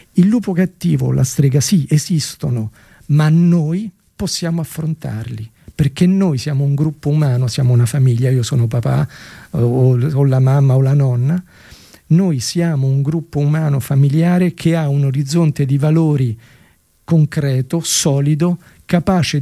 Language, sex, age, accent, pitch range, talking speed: Italian, male, 40-59, native, 130-165 Hz, 140 wpm